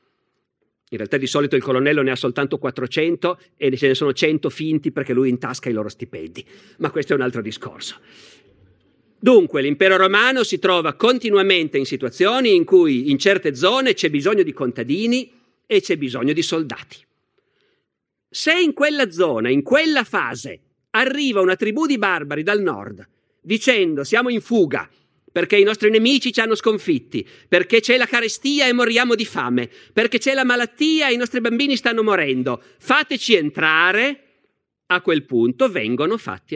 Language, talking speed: Italian, 165 wpm